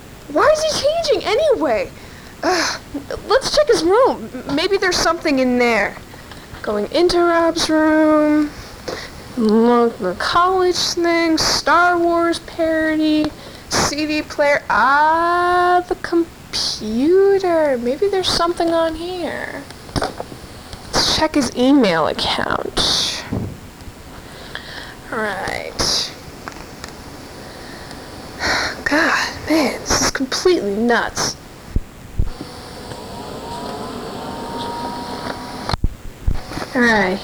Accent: American